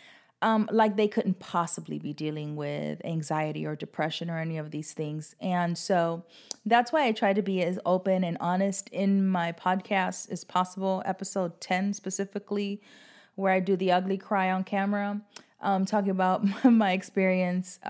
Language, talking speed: English, 165 wpm